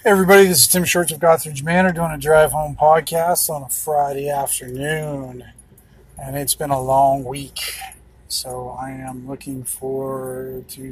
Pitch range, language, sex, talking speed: 130-155 Hz, English, male, 160 wpm